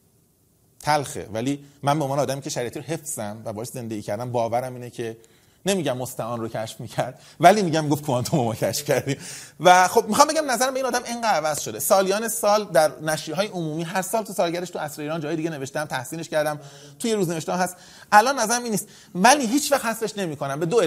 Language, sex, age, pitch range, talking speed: Persian, male, 30-49, 135-210 Hz, 205 wpm